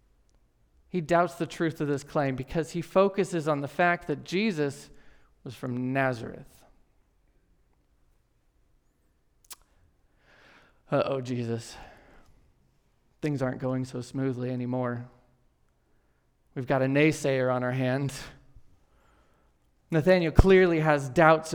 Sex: male